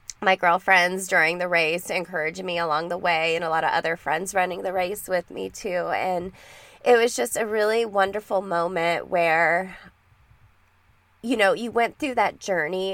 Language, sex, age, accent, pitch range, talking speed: English, female, 20-39, American, 170-210 Hz, 175 wpm